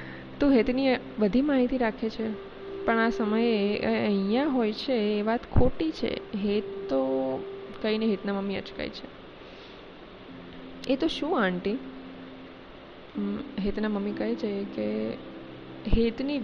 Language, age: Gujarati, 20-39